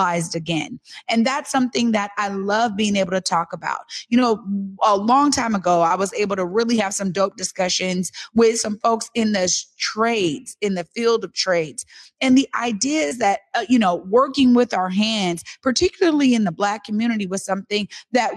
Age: 30-49